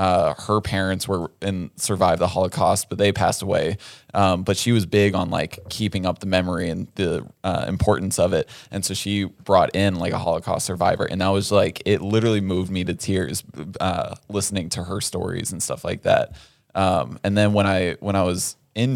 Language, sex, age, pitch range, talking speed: English, male, 20-39, 90-105 Hz, 210 wpm